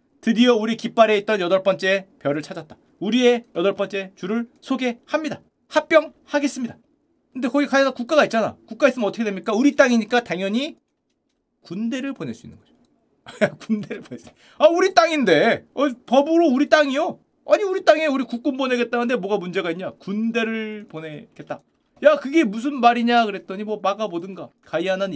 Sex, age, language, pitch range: male, 30-49, Korean, 195-270 Hz